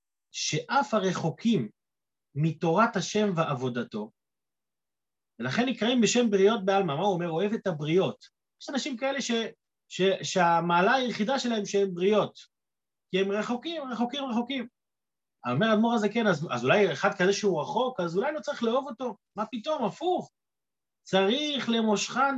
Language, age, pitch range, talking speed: Hebrew, 30-49, 170-235 Hz, 140 wpm